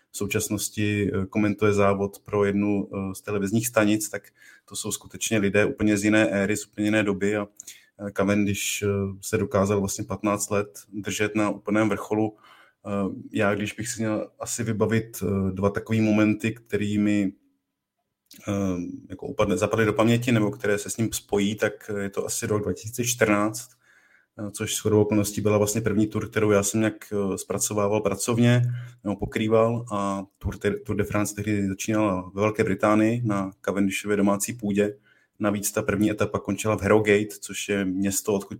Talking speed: 155 wpm